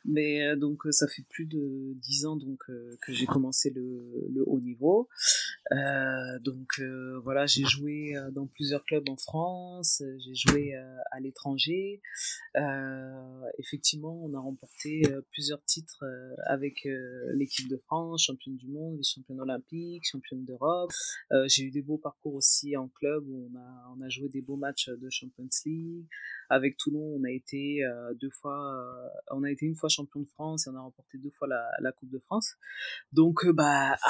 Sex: female